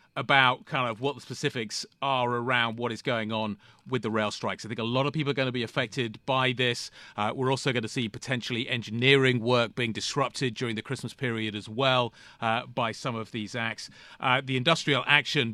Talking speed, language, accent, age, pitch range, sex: 215 wpm, English, British, 40-59, 115-140 Hz, male